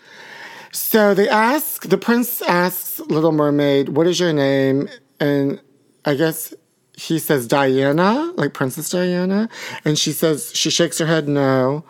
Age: 40-59